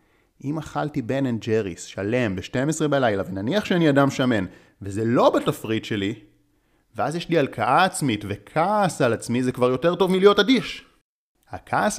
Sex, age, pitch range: male, 30-49, 100-140 Hz